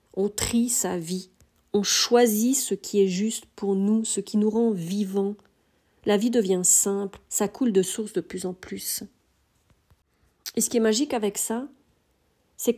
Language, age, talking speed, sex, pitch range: French, 40-59, 175 wpm, female, 195-230 Hz